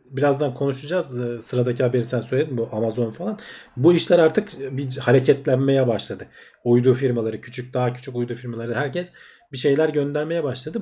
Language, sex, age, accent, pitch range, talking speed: Turkish, male, 40-59, native, 120-155 Hz, 150 wpm